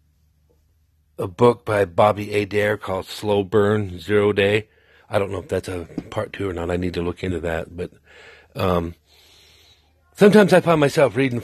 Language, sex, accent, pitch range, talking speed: English, male, American, 90-125 Hz, 175 wpm